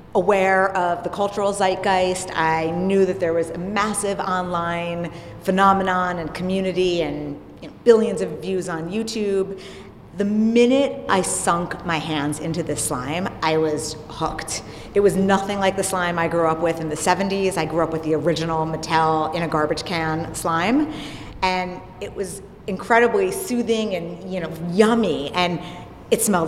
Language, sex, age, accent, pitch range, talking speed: English, female, 30-49, American, 160-190 Hz, 165 wpm